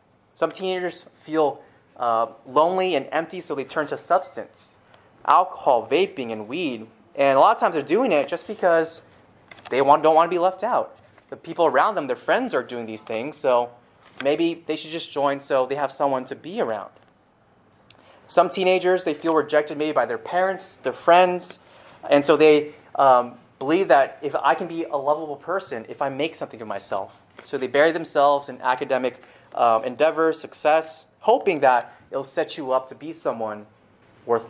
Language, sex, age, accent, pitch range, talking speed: English, male, 30-49, American, 130-160 Hz, 185 wpm